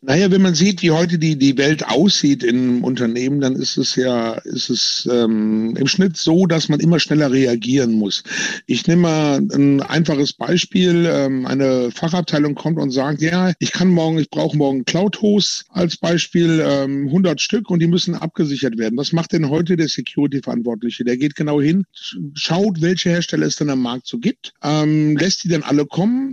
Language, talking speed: German, 190 wpm